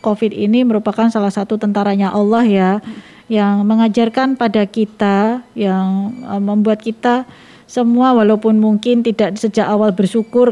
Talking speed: 125 wpm